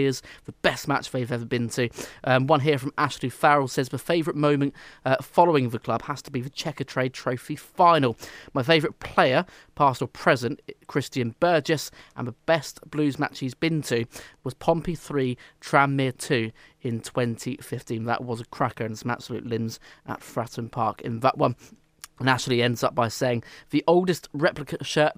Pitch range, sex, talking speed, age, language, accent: 120-150 Hz, male, 180 wpm, 20-39, English, British